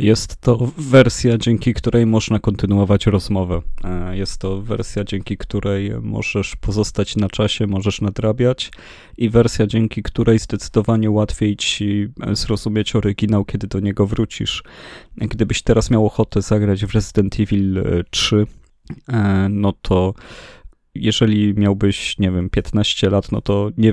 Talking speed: 130 wpm